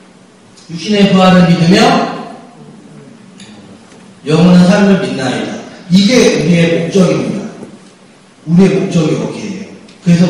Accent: native